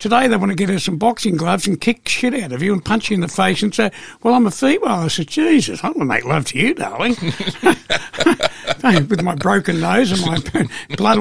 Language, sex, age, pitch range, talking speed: English, male, 60-79, 155-205 Hz, 240 wpm